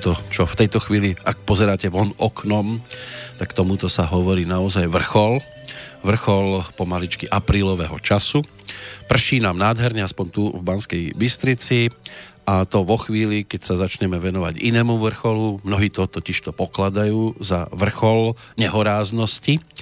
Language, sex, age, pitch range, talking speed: Slovak, male, 40-59, 95-115 Hz, 135 wpm